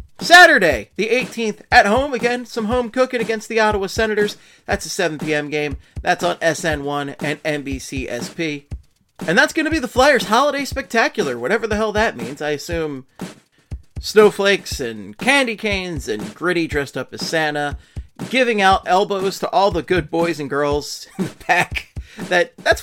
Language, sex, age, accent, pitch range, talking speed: English, male, 30-49, American, 150-225 Hz, 170 wpm